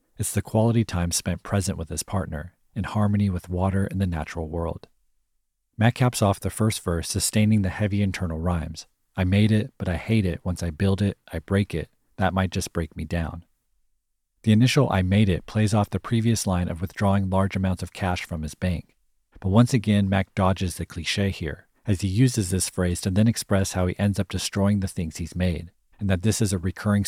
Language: English